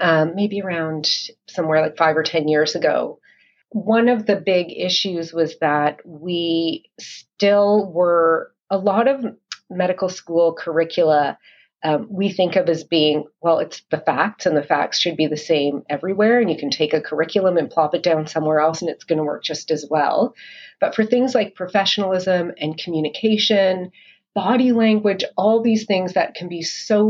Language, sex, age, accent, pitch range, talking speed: English, female, 30-49, American, 160-200 Hz, 175 wpm